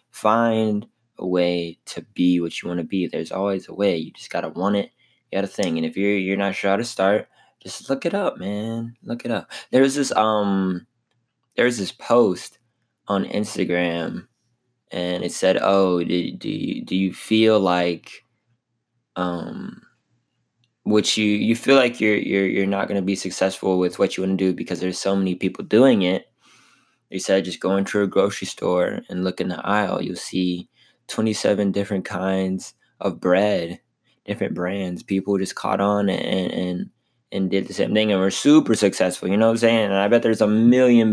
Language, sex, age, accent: English, male, 20-39, American